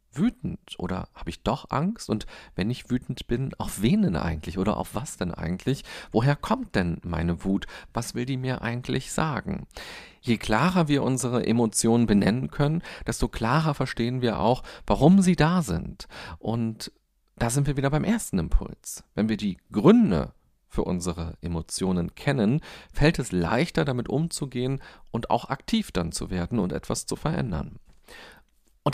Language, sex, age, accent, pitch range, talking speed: German, male, 40-59, German, 105-155 Hz, 165 wpm